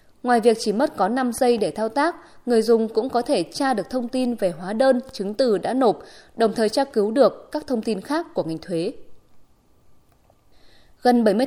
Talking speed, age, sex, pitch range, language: 210 wpm, 20-39, female, 205-270 Hz, Vietnamese